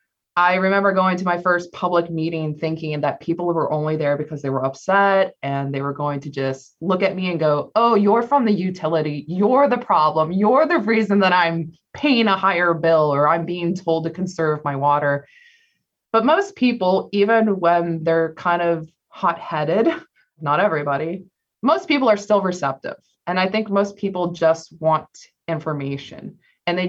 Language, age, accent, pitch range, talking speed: English, 20-39, American, 150-200 Hz, 180 wpm